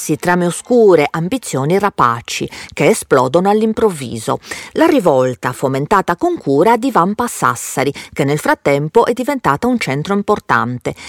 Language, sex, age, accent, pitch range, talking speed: Italian, female, 40-59, native, 145-235 Hz, 130 wpm